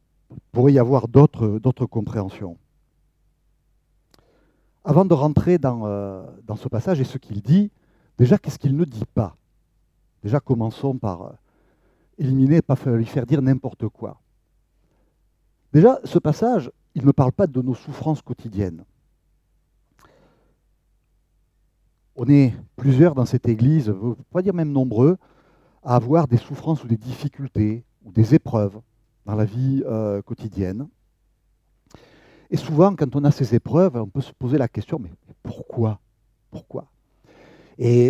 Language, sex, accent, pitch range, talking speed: French, male, French, 110-145 Hz, 140 wpm